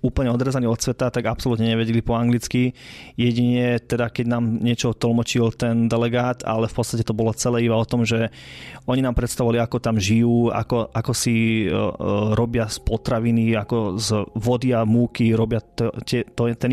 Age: 20-39